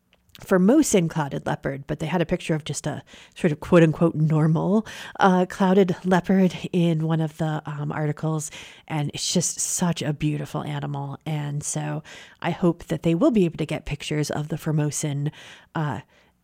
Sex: female